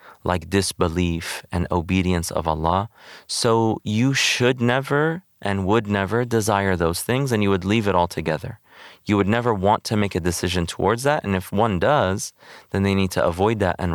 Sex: male